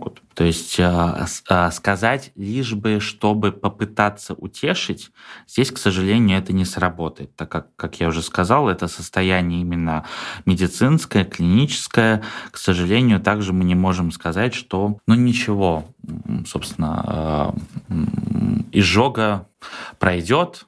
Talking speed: 110 wpm